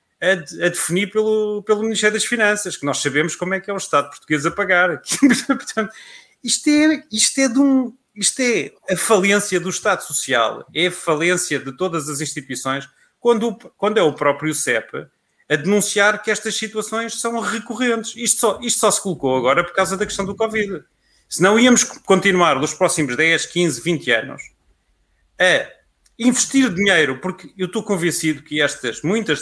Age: 30-49